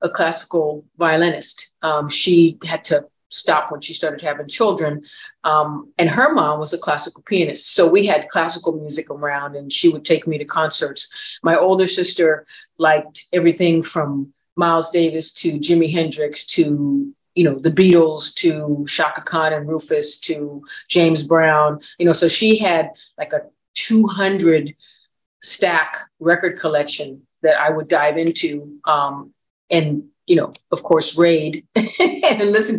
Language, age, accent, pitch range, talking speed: English, 40-59, American, 150-180 Hz, 155 wpm